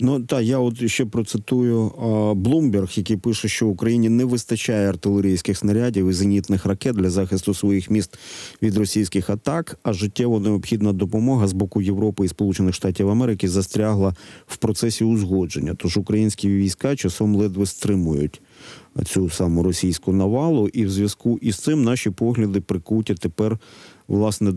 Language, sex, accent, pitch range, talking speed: Ukrainian, male, native, 100-120 Hz, 150 wpm